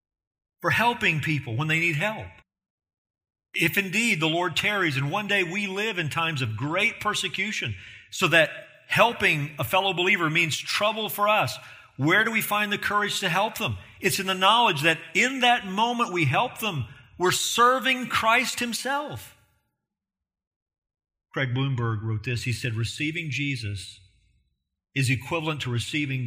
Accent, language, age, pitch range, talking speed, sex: American, English, 40-59, 115-190 Hz, 155 wpm, male